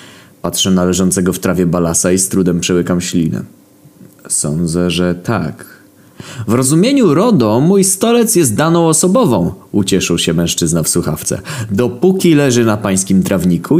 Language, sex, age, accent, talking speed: Polish, male, 20-39, native, 140 wpm